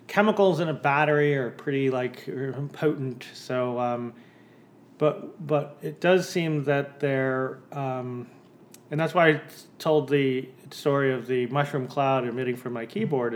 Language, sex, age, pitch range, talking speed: English, male, 30-49, 120-140 Hz, 150 wpm